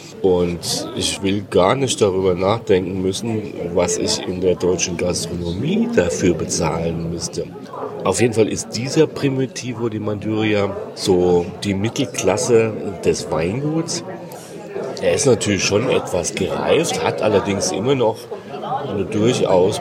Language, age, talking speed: German, 40-59, 125 wpm